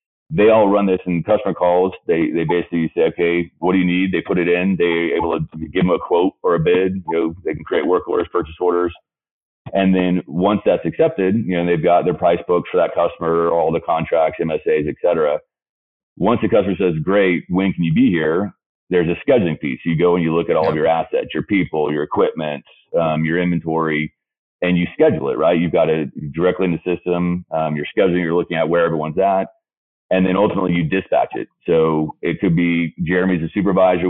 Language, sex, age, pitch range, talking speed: English, male, 30-49, 80-90 Hz, 220 wpm